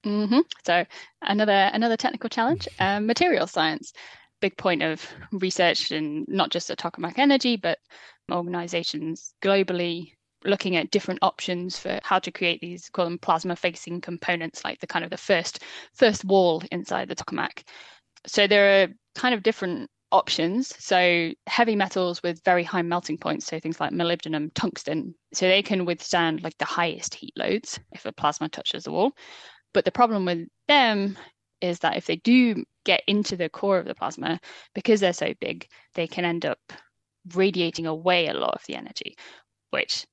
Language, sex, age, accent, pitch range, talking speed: English, female, 10-29, British, 170-200 Hz, 170 wpm